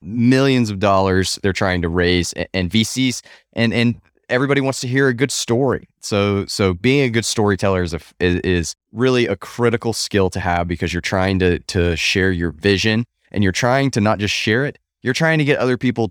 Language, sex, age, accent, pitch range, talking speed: English, male, 20-39, American, 90-110 Hz, 205 wpm